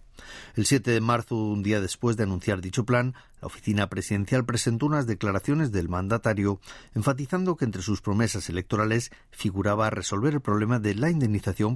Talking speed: 165 wpm